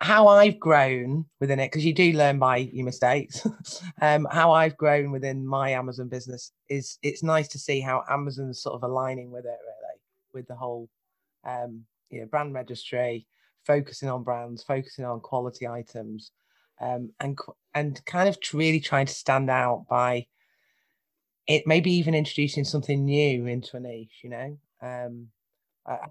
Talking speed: 165 wpm